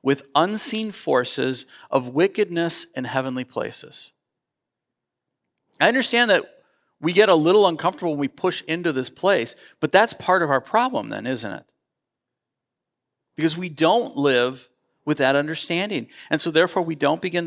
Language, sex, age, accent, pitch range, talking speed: English, male, 50-69, American, 135-175 Hz, 150 wpm